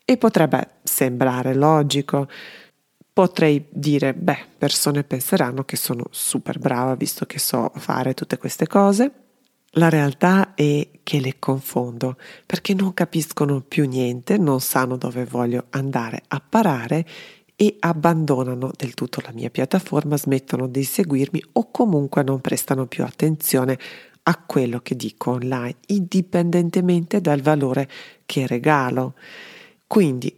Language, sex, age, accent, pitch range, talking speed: Italian, female, 40-59, native, 130-165 Hz, 125 wpm